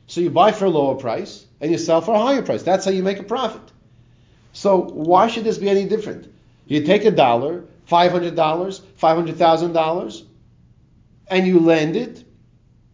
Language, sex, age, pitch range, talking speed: English, male, 40-59, 140-200 Hz, 170 wpm